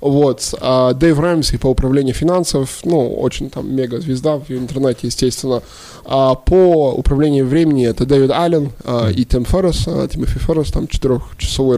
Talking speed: 140 wpm